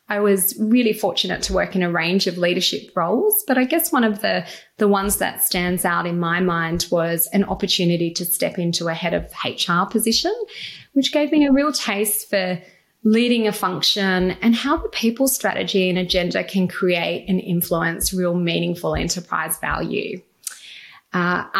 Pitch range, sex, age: 180-225 Hz, female, 20-39